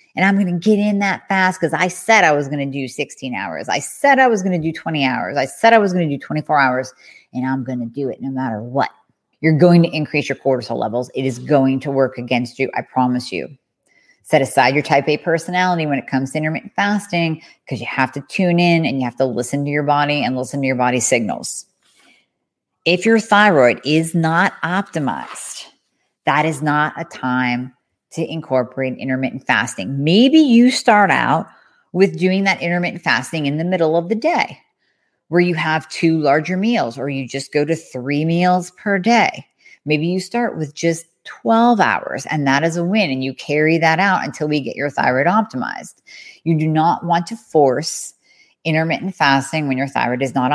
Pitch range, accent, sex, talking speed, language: 135-180 Hz, American, female, 210 wpm, English